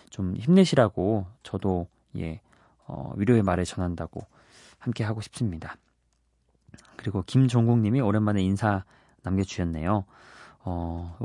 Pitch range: 95-140 Hz